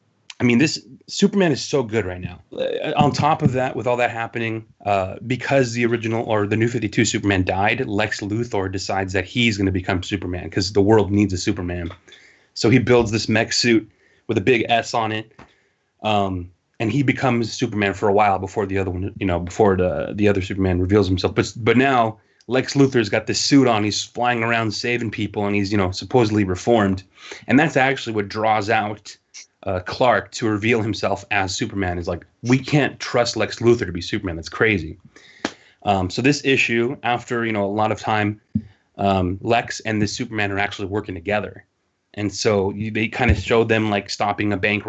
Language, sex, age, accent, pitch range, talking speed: English, male, 30-49, American, 100-115 Hz, 205 wpm